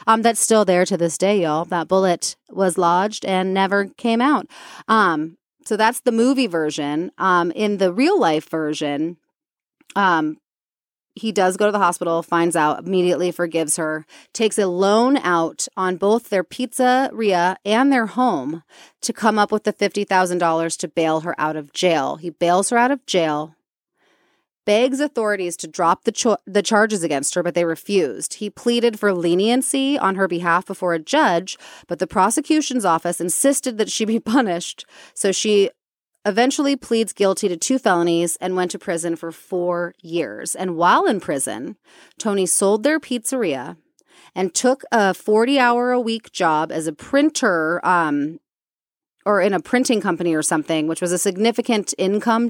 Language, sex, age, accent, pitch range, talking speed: English, female, 30-49, American, 175-235 Hz, 165 wpm